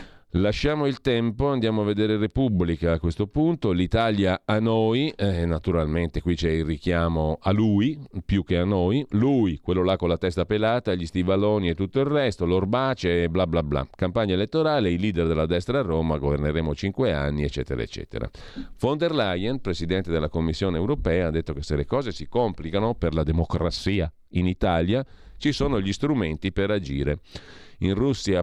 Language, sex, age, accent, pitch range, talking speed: Italian, male, 40-59, native, 85-110 Hz, 175 wpm